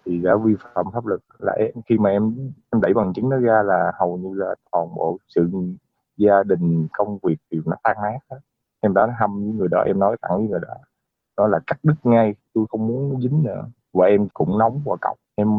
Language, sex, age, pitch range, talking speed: Vietnamese, male, 20-39, 100-125 Hz, 245 wpm